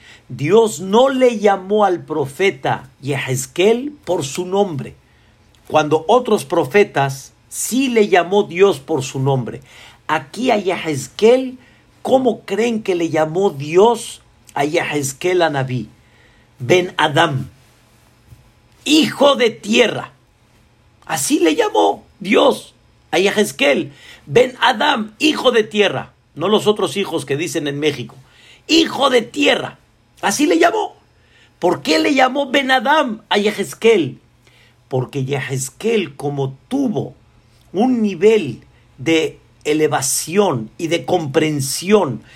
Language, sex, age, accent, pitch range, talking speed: Spanish, male, 50-69, Mexican, 135-215 Hz, 115 wpm